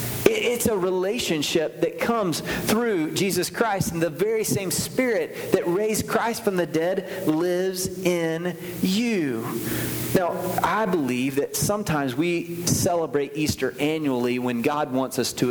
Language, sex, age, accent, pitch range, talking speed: English, male, 30-49, American, 135-185 Hz, 140 wpm